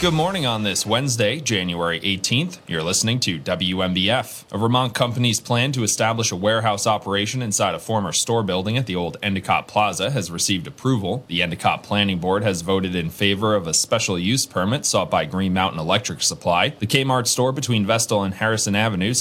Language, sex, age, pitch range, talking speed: English, male, 30-49, 95-115 Hz, 185 wpm